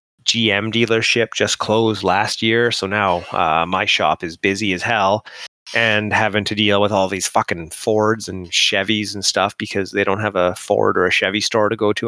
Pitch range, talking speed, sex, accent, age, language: 95-110 Hz, 205 wpm, male, American, 30-49, English